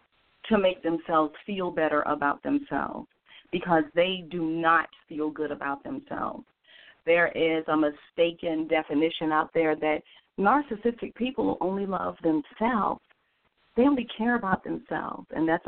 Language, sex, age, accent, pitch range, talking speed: English, female, 40-59, American, 155-185 Hz, 135 wpm